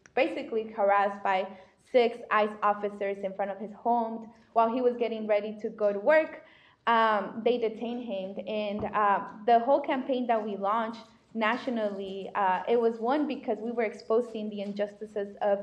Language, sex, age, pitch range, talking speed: English, female, 20-39, 205-235 Hz, 170 wpm